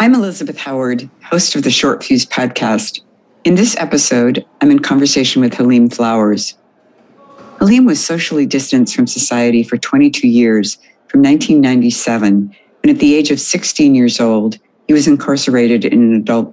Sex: female